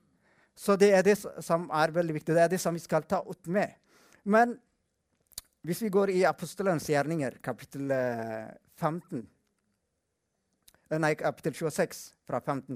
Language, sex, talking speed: English, male, 140 wpm